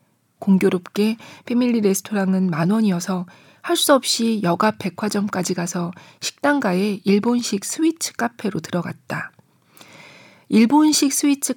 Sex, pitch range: female, 180-220 Hz